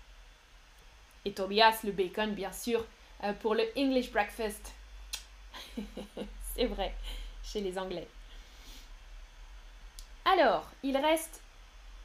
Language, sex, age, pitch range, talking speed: French, female, 10-29, 220-300 Hz, 95 wpm